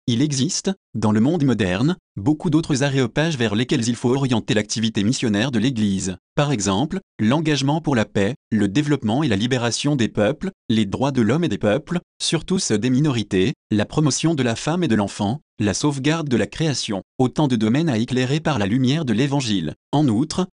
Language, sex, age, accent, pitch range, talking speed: French, male, 30-49, French, 110-150 Hz, 195 wpm